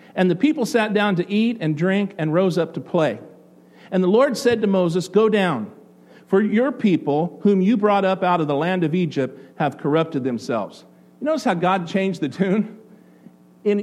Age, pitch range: 50-69, 160-210 Hz